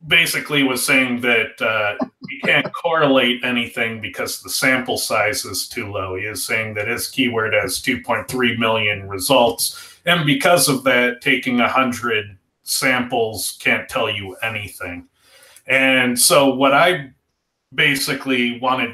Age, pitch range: 30-49, 115-140 Hz